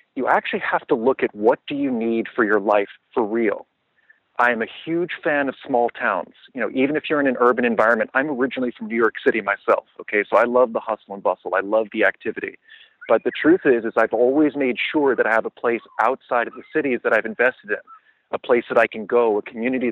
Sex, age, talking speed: male, 40-59, 240 wpm